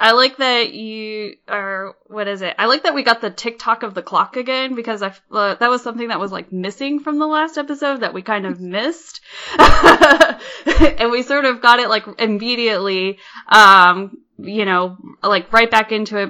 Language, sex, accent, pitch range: English, female, American, 190-235 Hz